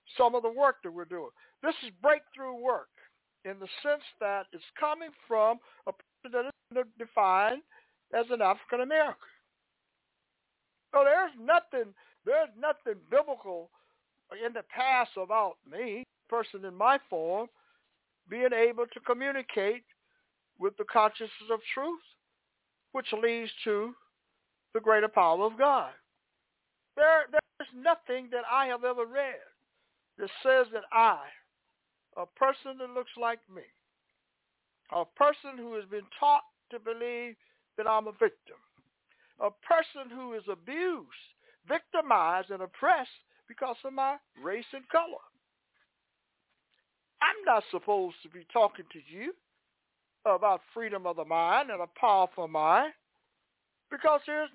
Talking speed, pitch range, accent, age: 135 wpm, 215-290 Hz, American, 60-79